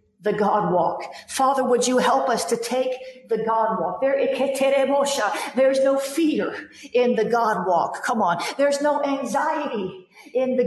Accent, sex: American, female